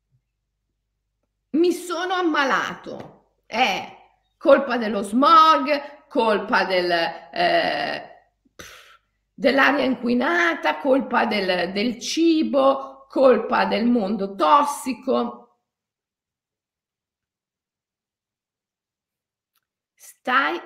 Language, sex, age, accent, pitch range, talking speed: Italian, female, 50-69, native, 205-300 Hz, 60 wpm